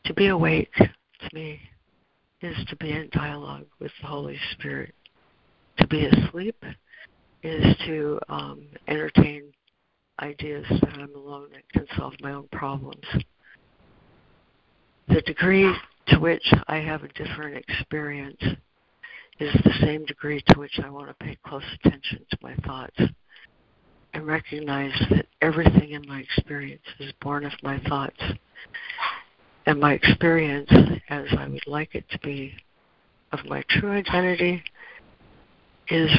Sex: female